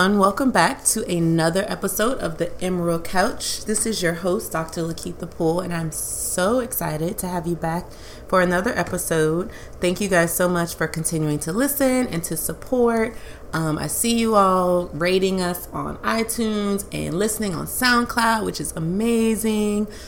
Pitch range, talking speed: 160-195 Hz, 165 wpm